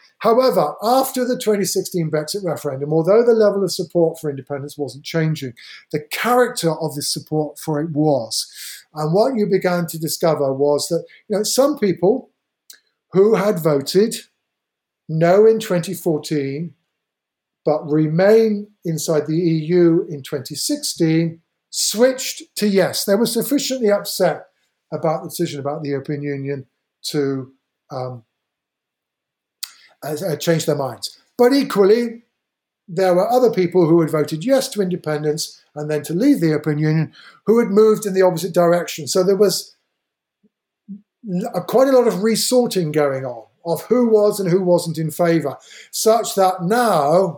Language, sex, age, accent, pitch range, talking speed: English, male, 50-69, British, 155-210 Hz, 145 wpm